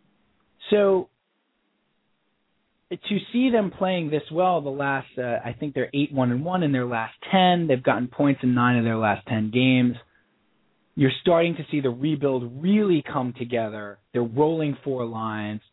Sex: male